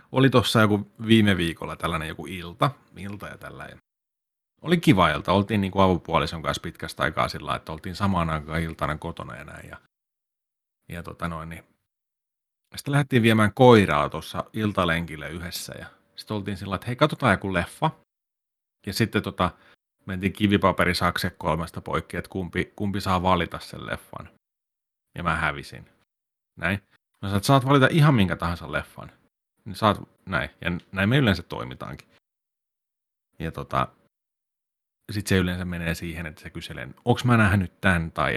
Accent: native